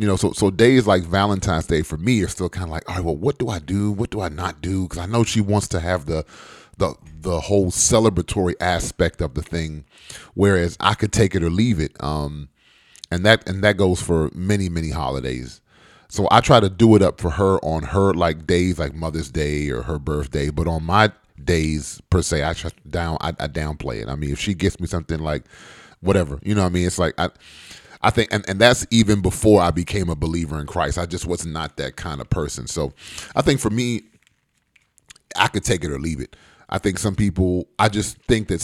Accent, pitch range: American, 80-105 Hz